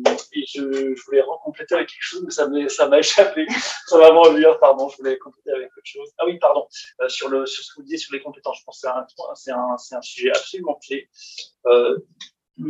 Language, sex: French, male